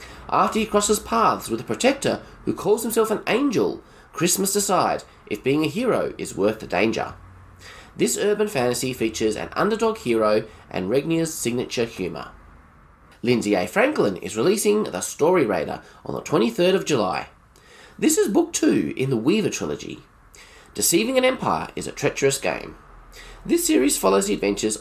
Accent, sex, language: Australian, male, English